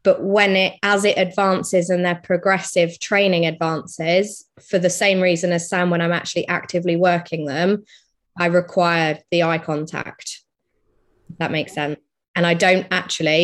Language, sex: English, female